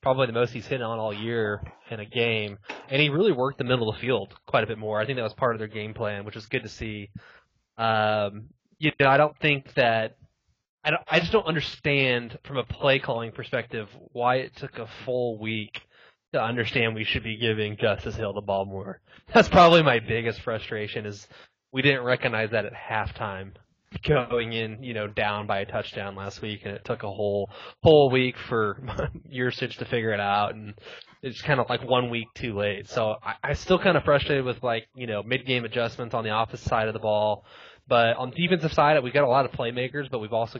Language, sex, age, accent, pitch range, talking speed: English, male, 20-39, American, 105-125 Hz, 225 wpm